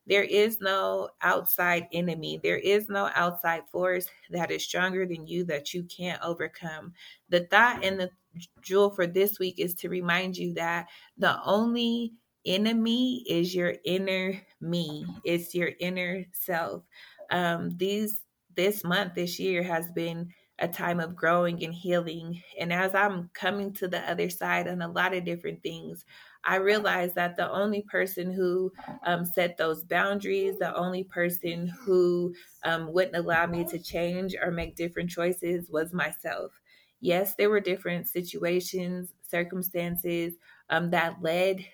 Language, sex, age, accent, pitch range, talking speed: English, female, 20-39, American, 170-190 Hz, 155 wpm